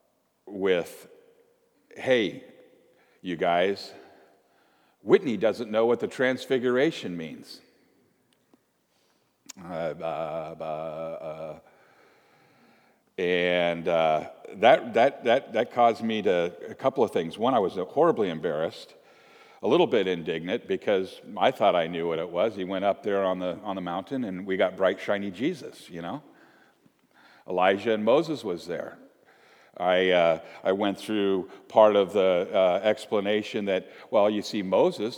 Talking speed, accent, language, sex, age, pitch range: 140 wpm, American, English, male, 50-69, 95-125 Hz